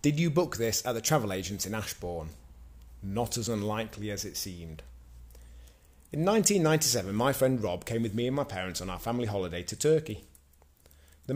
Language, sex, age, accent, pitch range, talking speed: English, male, 30-49, British, 85-125 Hz, 180 wpm